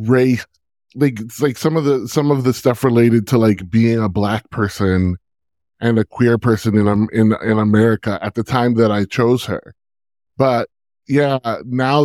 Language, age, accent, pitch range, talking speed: English, 20-39, American, 110-130 Hz, 180 wpm